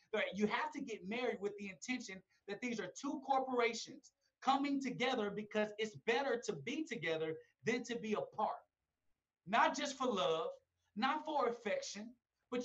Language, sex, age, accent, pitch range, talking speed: English, male, 30-49, American, 210-255 Hz, 155 wpm